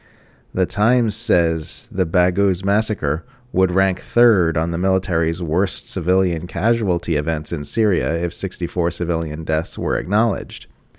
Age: 40-59